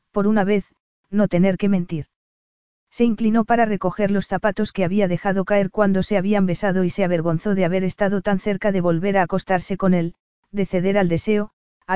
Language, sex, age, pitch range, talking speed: Spanish, female, 40-59, 180-210 Hz, 200 wpm